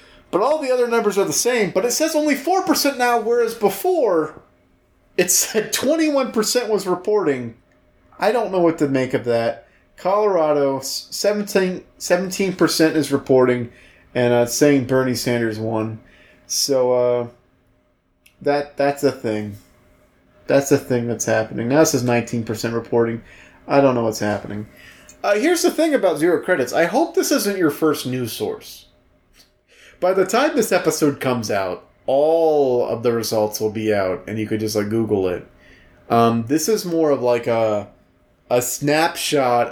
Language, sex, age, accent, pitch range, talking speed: English, male, 30-49, American, 115-185 Hz, 160 wpm